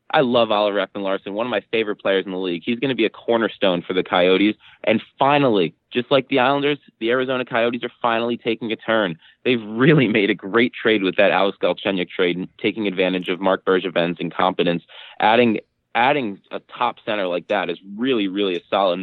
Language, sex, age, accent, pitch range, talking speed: English, male, 20-39, American, 95-120 Hz, 210 wpm